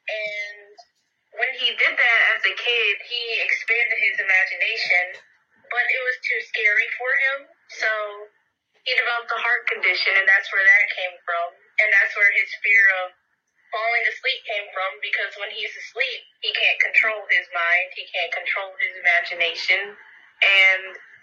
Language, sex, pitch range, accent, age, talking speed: English, female, 190-255 Hz, American, 20-39, 160 wpm